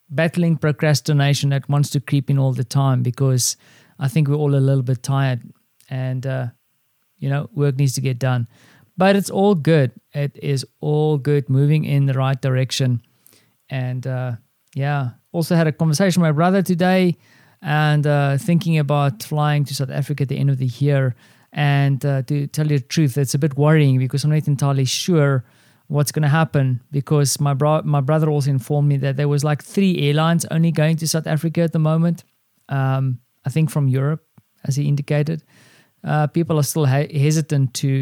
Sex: male